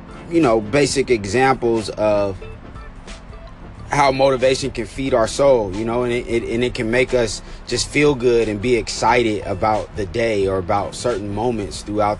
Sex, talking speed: male, 170 wpm